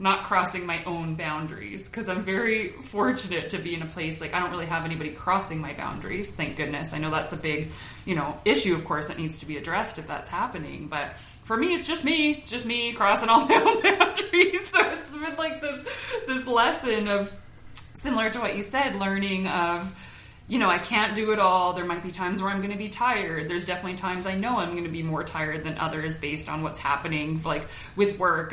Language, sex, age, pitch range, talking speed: English, female, 20-39, 160-225 Hz, 230 wpm